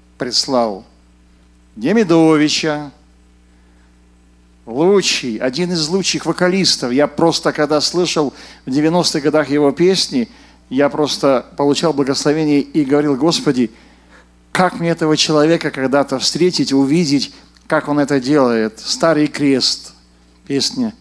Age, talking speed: 50-69, 105 wpm